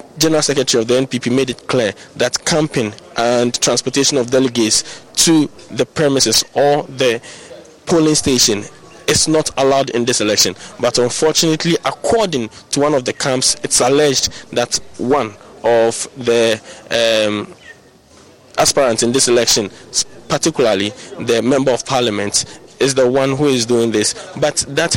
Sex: male